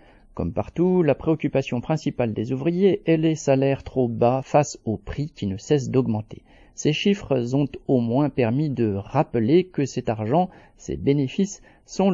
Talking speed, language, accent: 165 wpm, French, French